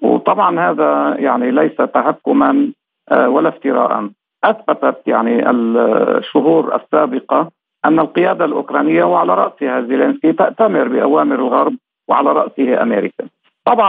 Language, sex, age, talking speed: Arabic, male, 50-69, 105 wpm